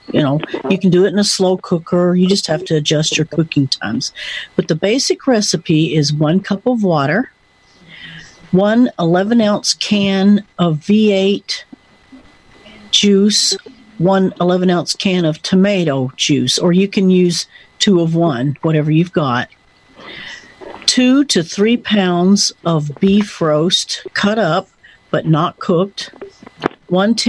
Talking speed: 135 wpm